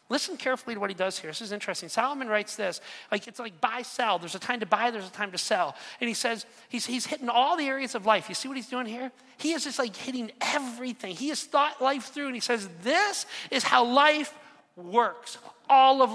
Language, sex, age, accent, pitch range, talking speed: English, male, 40-59, American, 210-260 Hz, 245 wpm